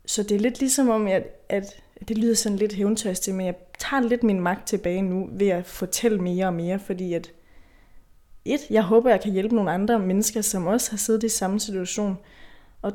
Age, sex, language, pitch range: 20-39, female, Danish, 185-215 Hz